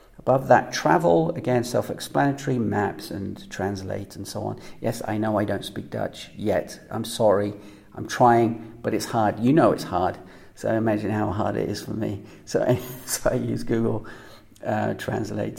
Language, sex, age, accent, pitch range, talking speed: English, male, 40-59, British, 110-145 Hz, 175 wpm